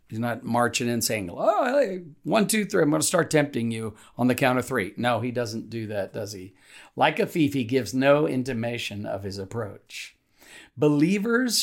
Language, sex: English, male